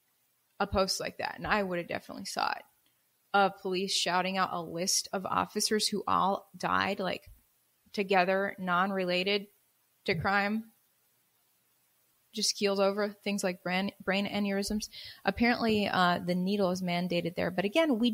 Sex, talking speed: female, 150 wpm